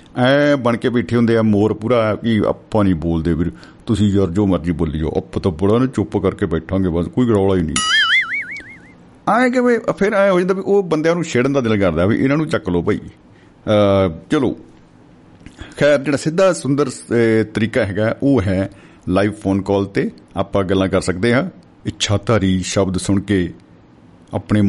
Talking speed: 185 wpm